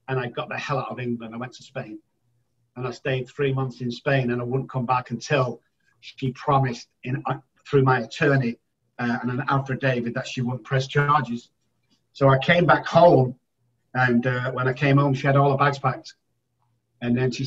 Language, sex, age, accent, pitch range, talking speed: English, male, 50-69, British, 120-140 Hz, 210 wpm